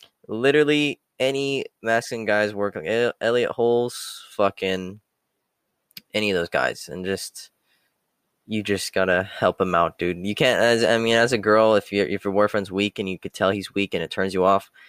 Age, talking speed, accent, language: 10-29, 190 wpm, American, English